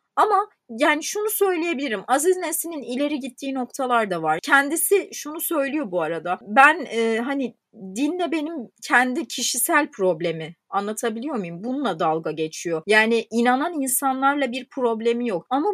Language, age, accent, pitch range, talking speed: Turkish, 30-49, native, 235-370 Hz, 135 wpm